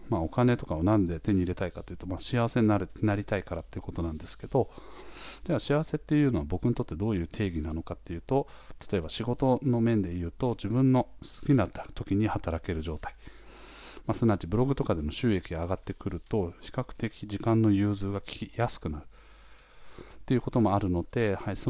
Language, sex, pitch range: Japanese, male, 90-120 Hz